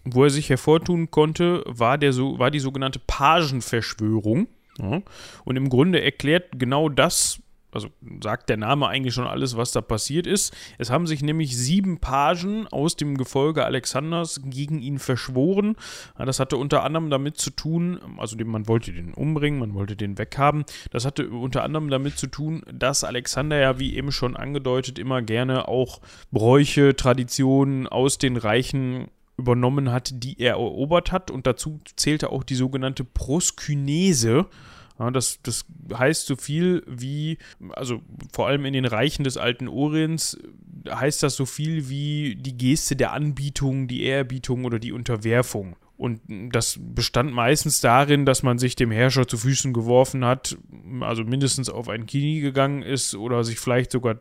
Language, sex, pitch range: German, male, 120-145 Hz